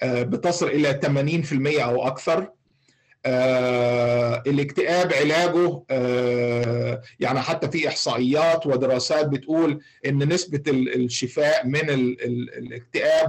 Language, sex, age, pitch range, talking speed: Arabic, male, 50-69, 130-165 Hz, 95 wpm